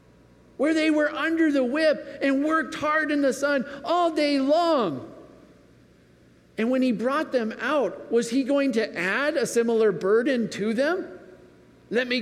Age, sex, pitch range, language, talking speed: 50-69, male, 180-275 Hz, English, 160 wpm